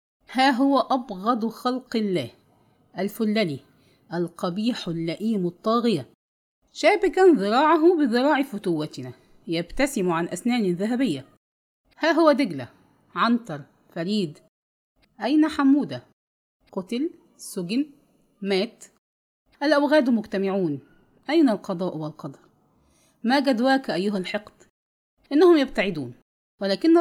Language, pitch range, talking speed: English, 170-250 Hz, 85 wpm